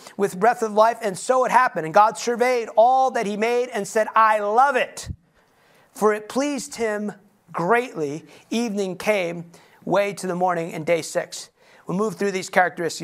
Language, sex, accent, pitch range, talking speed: English, male, American, 190-235 Hz, 180 wpm